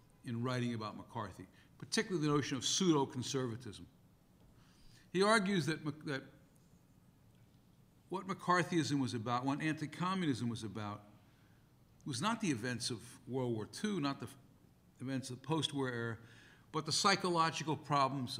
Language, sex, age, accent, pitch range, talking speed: English, male, 60-79, American, 125-165 Hz, 130 wpm